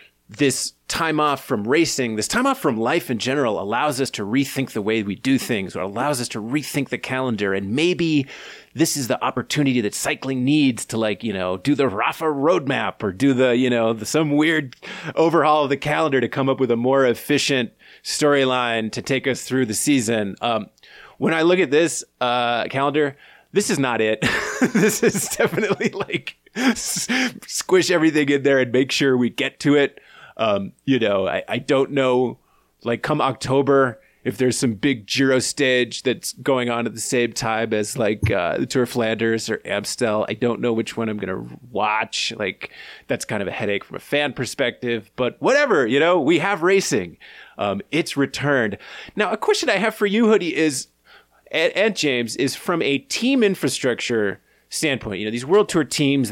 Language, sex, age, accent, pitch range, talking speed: English, male, 30-49, American, 120-155 Hz, 190 wpm